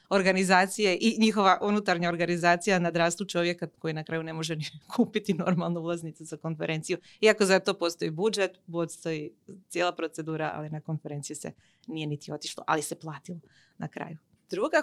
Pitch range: 160-200 Hz